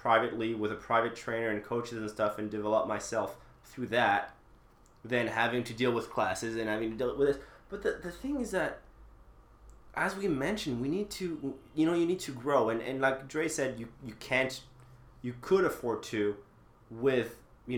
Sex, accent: male, American